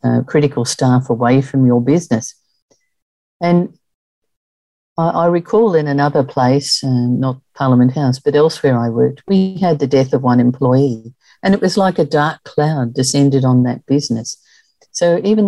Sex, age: female, 50-69